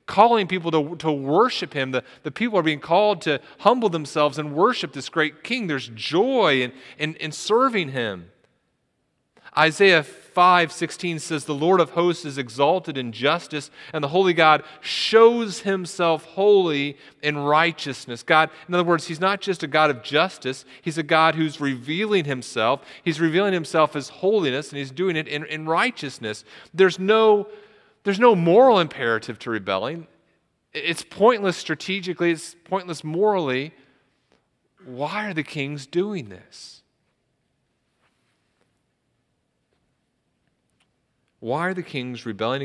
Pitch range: 125-175 Hz